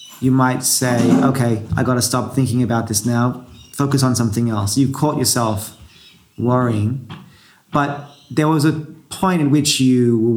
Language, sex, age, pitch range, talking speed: English, male, 30-49, 110-135 Hz, 170 wpm